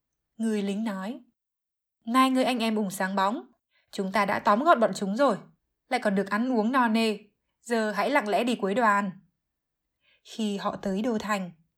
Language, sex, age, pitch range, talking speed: Vietnamese, female, 20-39, 200-245 Hz, 190 wpm